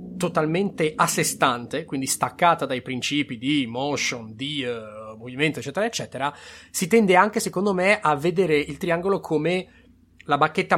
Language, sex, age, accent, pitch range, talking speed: Italian, male, 30-49, native, 135-190 Hz, 145 wpm